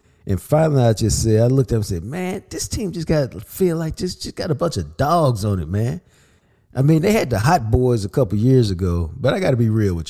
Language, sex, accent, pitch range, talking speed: English, male, American, 90-125 Hz, 265 wpm